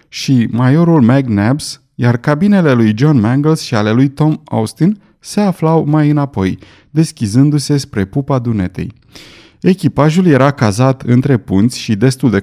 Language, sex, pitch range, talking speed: Romanian, male, 110-150 Hz, 140 wpm